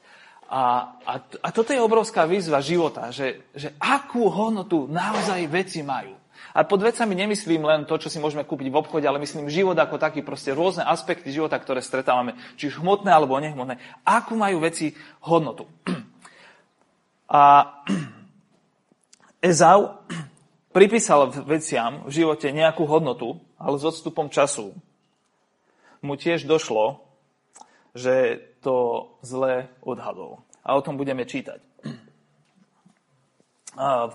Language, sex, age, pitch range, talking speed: Slovak, male, 30-49, 145-190 Hz, 125 wpm